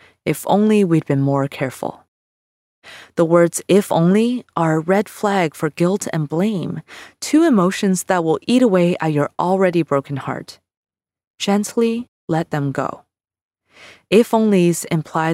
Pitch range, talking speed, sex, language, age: 155-205 Hz, 140 wpm, female, English, 20-39